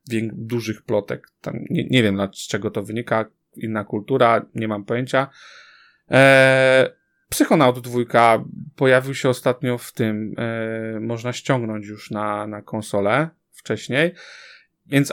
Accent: native